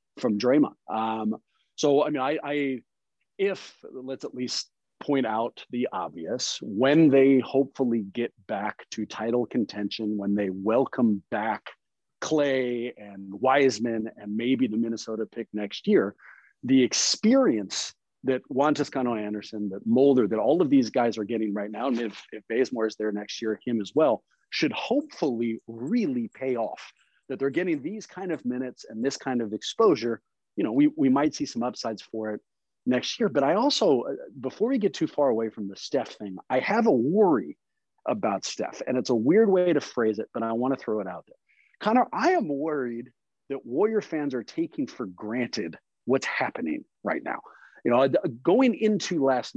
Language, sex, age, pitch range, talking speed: English, male, 40-59, 110-145 Hz, 180 wpm